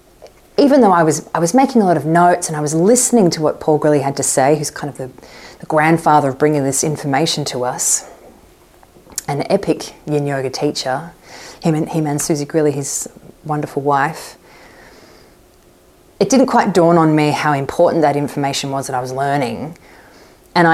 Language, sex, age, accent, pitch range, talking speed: English, female, 20-39, Australian, 140-185 Hz, 185 wpm